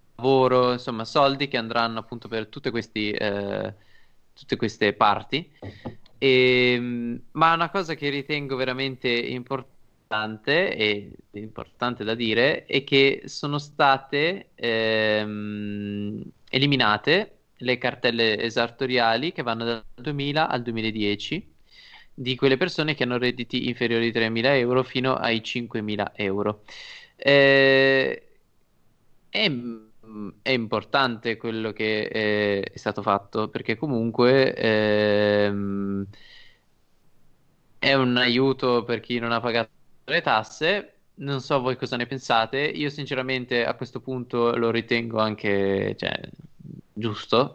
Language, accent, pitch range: Italian, native, 110-130 Hz